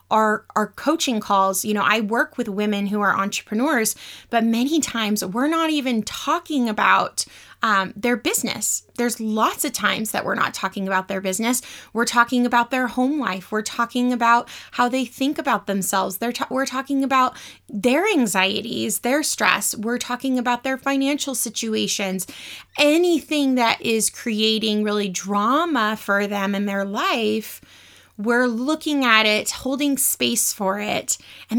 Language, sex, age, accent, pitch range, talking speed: English, female, 20-39, American, 205-250 Hz, 160 wpm